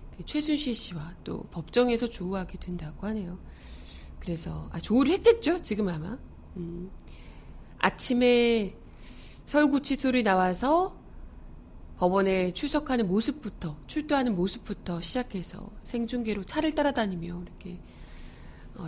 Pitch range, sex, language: 180-270 Hz, female, Korean